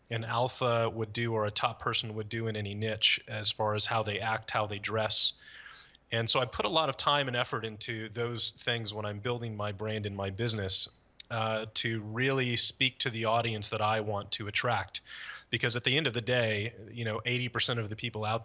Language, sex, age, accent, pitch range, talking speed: English, male, 30-49, American, 105-120 Hz, 225 wpm